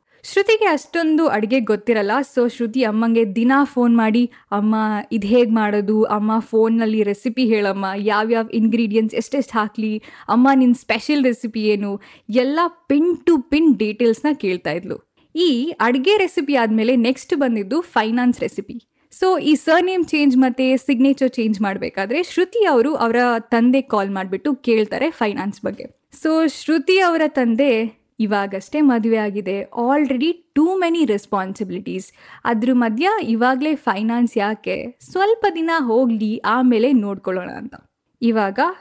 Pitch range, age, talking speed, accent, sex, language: 220-295 Hz, 10-29, 130 wpm, native, female, Kannada